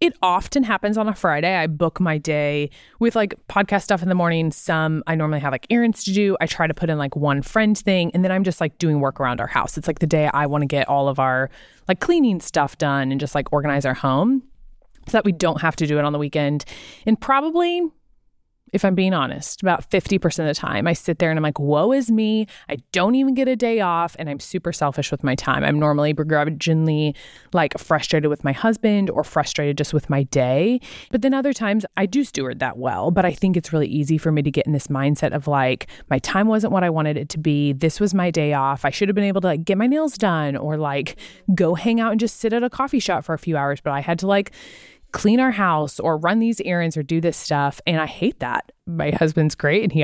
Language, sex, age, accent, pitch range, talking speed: English, female, 20-39, American, 145-205 Hz, 255 wpm